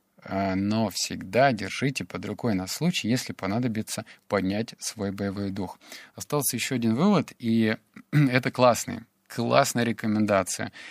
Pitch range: 105-130 Hz